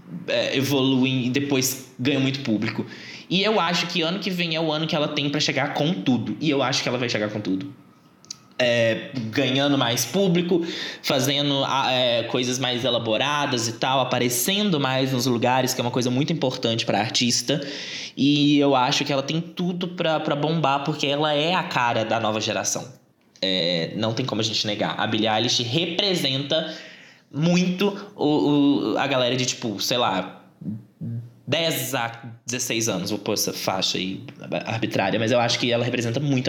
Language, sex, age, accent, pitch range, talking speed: Portuguese, male, 20-39, Brazilian, 125-170 Hz, 175 wpm